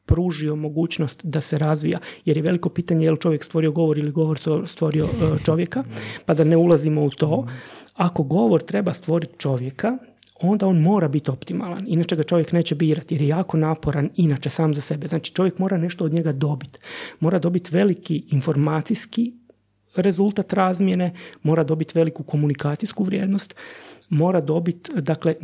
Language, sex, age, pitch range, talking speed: Croatian, male, 30-49, 155-185 Hz, 160 wpm